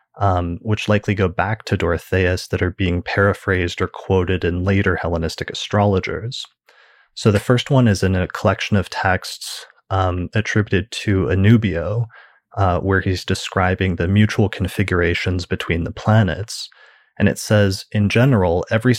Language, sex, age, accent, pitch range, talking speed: English, male, 30-49, American, 90-105 Hz, 150 wpm